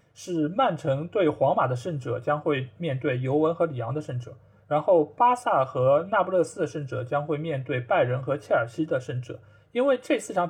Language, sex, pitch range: Chinese, male, 130-160 Hz